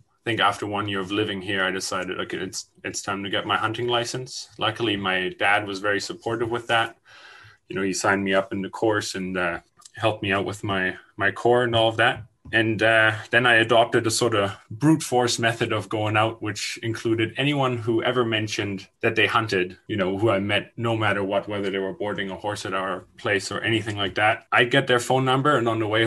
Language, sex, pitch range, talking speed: English, male, 100-115 Hz, 235 wpm